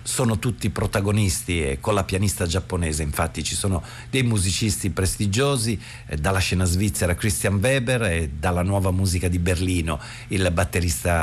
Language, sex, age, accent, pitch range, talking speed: Italian, male, 50-69, native, 85-110 Hz, 145 wpm